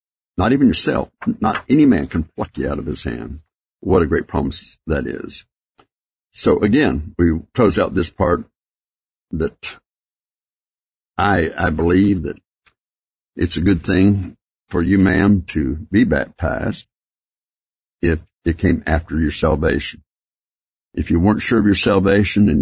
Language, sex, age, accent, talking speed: English, male, 60-79, American, 145 wpm